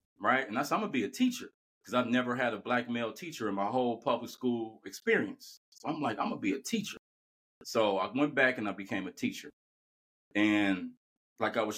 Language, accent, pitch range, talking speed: English, American, 100-150 Hz, 225 wpm